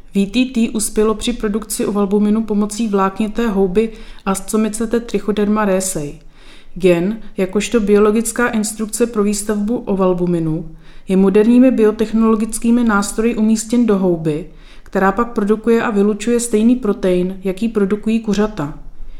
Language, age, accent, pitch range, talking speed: Czech, 30-49, native, 195-225 Hz, 110 wpm